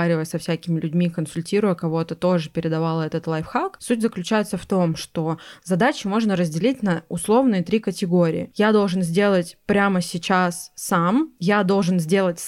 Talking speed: 145 wpm